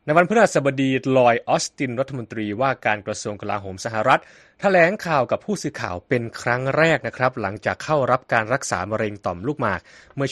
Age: 20-39